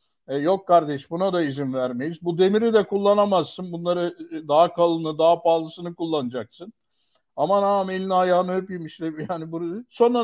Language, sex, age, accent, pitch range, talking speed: Turkish, male, 60-79, native, 160-195 Hz, 145 wpm